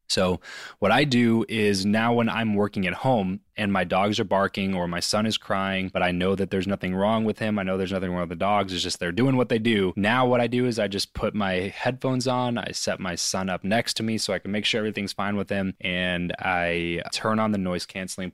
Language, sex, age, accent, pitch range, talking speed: English, male, 20-39, American, 95-115 Hz, 260 wpm